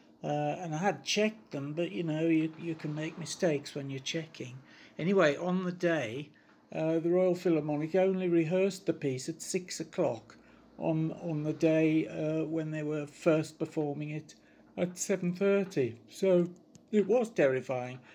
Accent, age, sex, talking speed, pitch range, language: British, 60-79, male, 160 wpm, 140-170 Hz, English